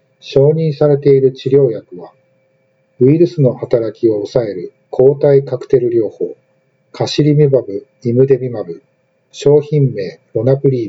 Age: 50-69